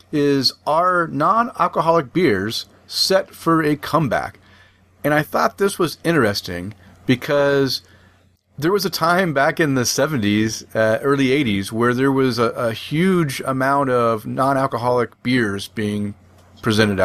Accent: American